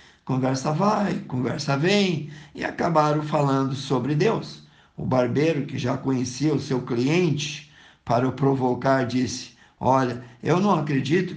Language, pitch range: Portuguese, 130-165 Hz